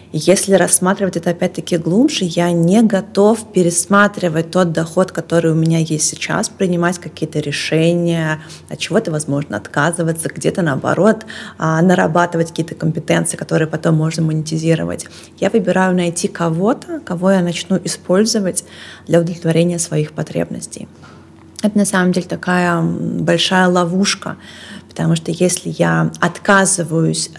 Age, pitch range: 30-49, 160-185 Hz